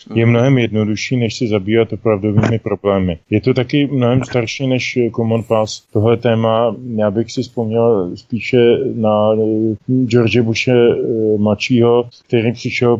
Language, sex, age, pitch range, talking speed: Czech, male, 20-39, 110-120 Hz, 135 wpm